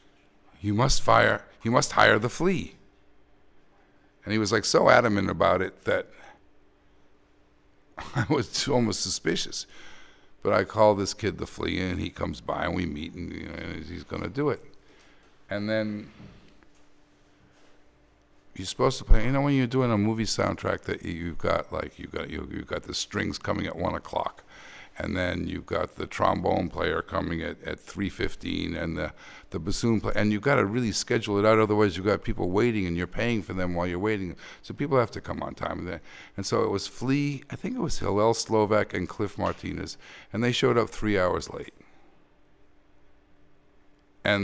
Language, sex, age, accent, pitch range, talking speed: English, male, 50-69, American, 90-110 Hz, 180 wpm